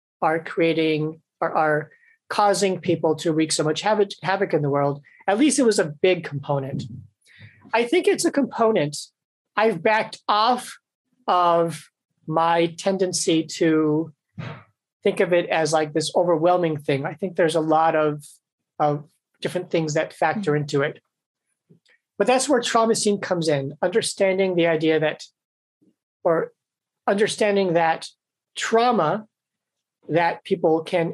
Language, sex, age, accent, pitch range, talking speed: English, male, 40-59, American, 155-195 Hz, 140 wpm